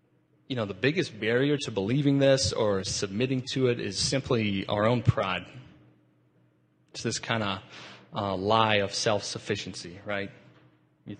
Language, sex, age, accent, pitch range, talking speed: English, male, 30-49, American, 100-130 Hz, 145 wpm